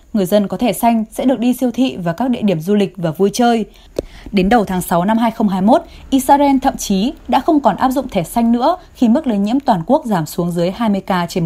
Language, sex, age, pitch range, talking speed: Vietnamese, female, 20-39, 195-255 Hz, 250 wpm